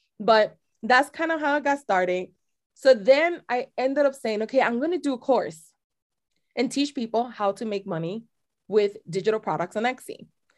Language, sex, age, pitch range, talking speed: English, female, 20-39, 200-280 Hz, 185 wpm